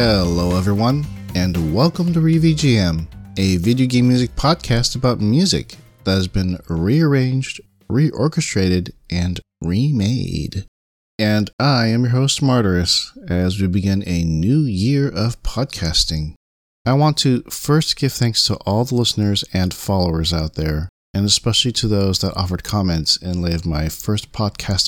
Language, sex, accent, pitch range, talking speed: English, male, American, 90-120 Hz, 145 wpm